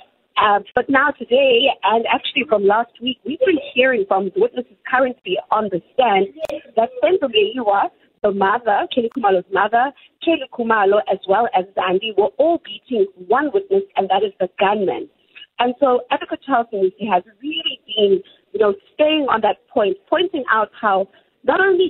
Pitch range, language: 195-310 Hz, English